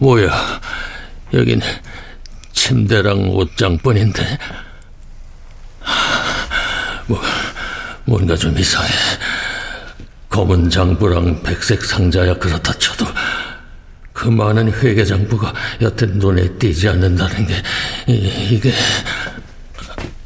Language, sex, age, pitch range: Korean, male, 60-79, 90-115 Hz